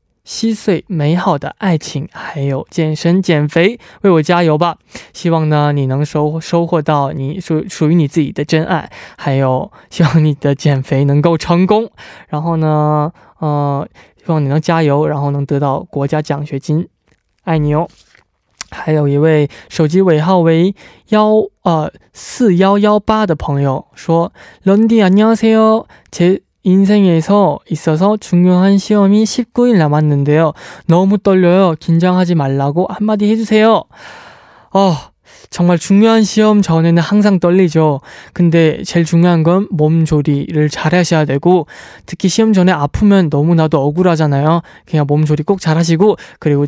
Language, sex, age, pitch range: Korean, male, 20-39, 150-190 Hz